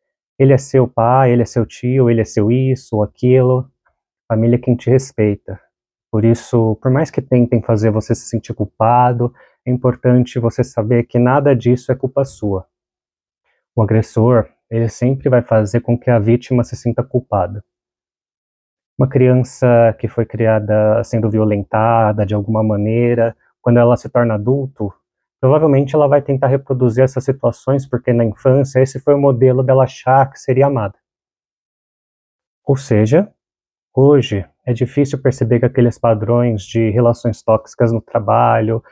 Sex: male